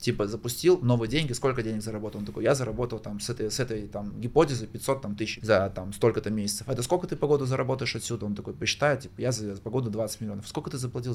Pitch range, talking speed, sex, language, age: 105-130 Hz, 235 wpm, male, Russian, 20-39